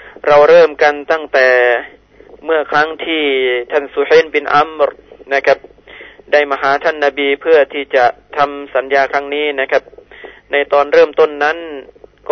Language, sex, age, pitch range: Thai, male, 20-39, 140-175 Hz